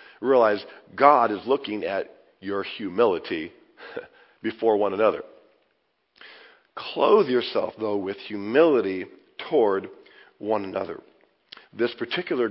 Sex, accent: male, American